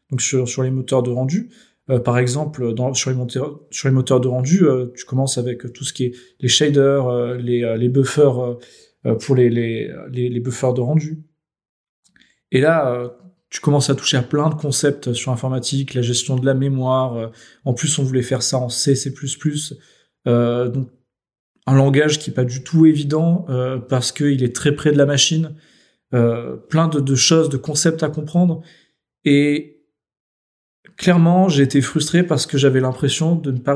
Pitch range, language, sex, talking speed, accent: 130-160 Hz, French, male, 195 wpm, French